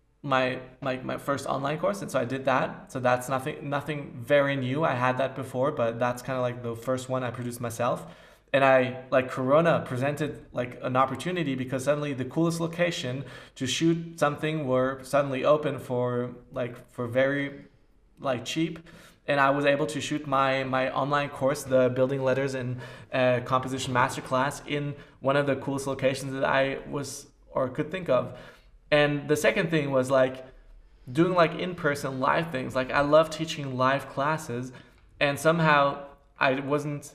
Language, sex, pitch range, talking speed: English, male, 130-150 Hz, 175 wpm